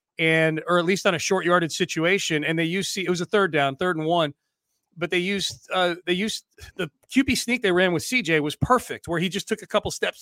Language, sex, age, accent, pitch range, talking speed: English, male, 30-49, American, 160-190 Hz, 250 wpm